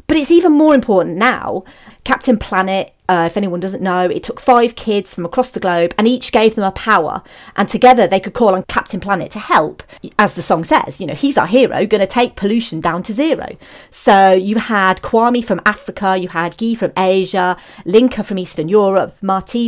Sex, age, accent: female, 40-59, British